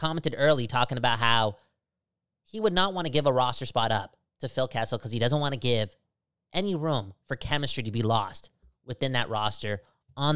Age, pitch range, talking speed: 20-39, 120-160 Hz, 205 wpm